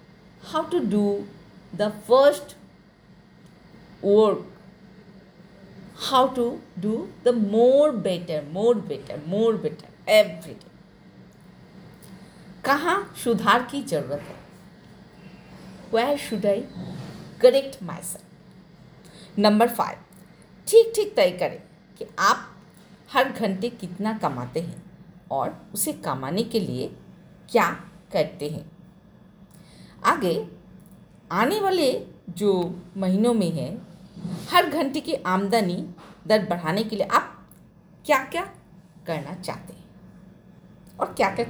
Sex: female